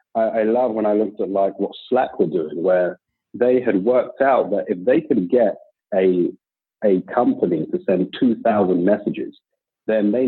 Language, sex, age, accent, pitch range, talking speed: English, male, 40-59, British, 105-170 Hz, 180 wpm